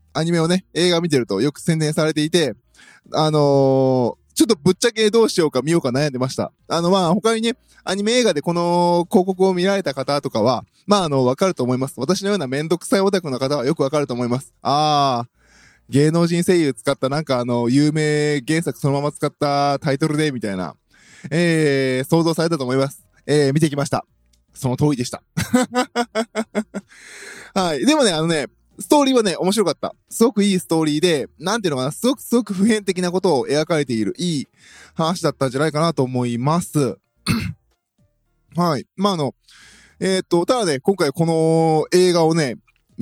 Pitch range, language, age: 140-195 Hz, Japanese, 20-39